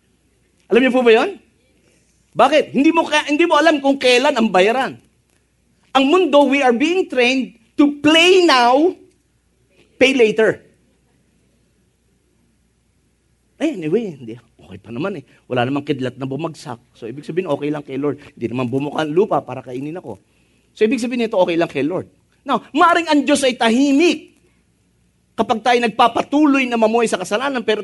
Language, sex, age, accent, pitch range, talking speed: English, male, 40-59, Filipino, 165-260 Hz, 160 wpm